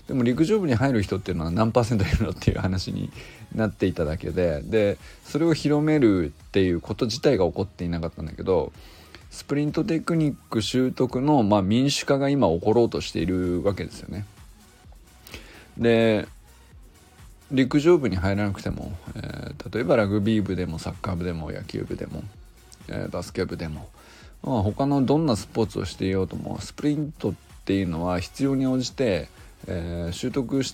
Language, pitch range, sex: Japanese, 90-130 Hz, male